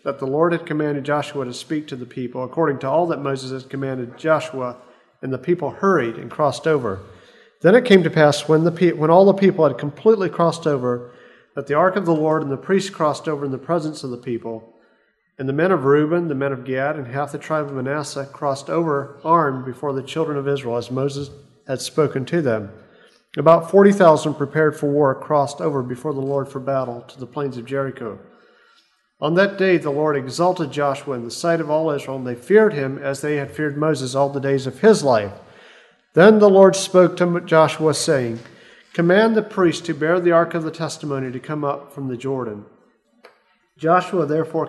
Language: English